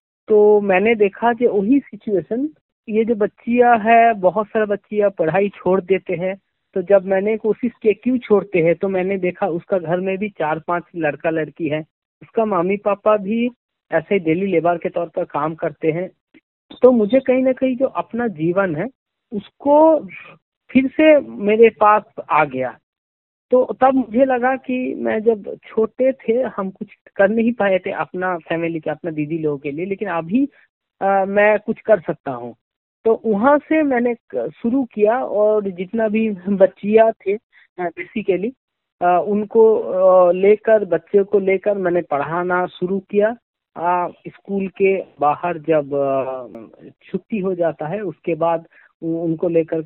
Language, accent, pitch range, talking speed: Hindi, native, 170-225 Hz, 160 wpm